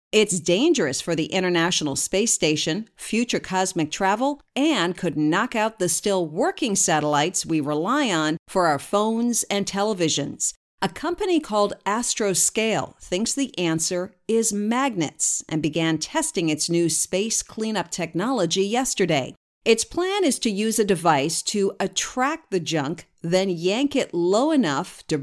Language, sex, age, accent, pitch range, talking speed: English, female, 50-69, American, 170-230 Hz, 145 wpm